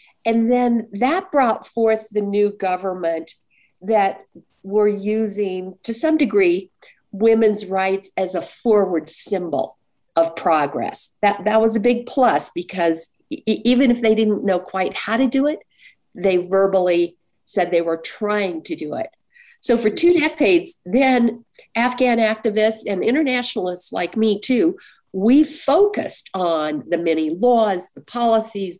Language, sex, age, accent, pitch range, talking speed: English, female, 50-69, American, 175-230 Hz, 145 wpm